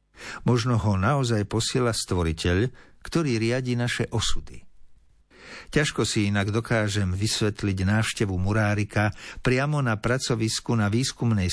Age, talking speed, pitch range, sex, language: 50-69, 110 wpm, 95-130 Hz, male, Slovak